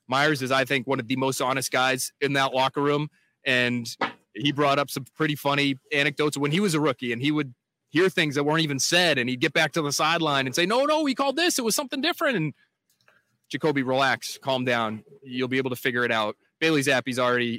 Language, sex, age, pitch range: English, male, 30-49, 135-180 Hz